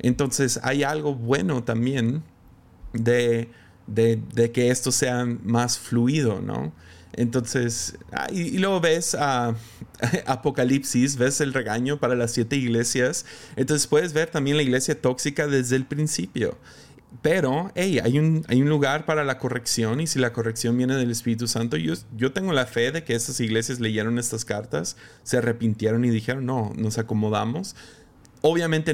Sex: male